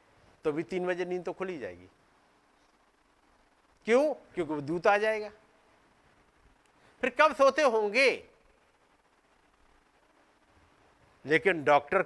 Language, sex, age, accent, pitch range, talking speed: Hindi, male, 50-69, native, 185-250 Hz, 95 wpm